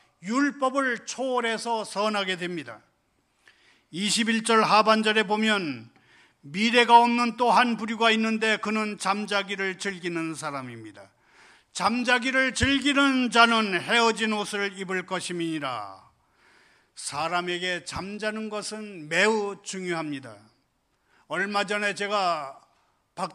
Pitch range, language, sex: 140-205 Hz, Korean, male